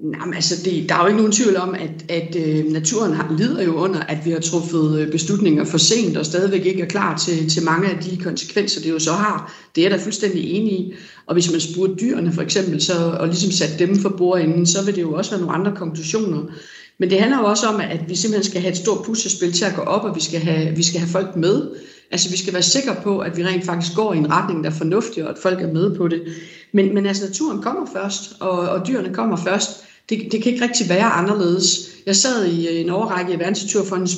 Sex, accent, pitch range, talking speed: female, native, 170-205 Hz, 250 wpm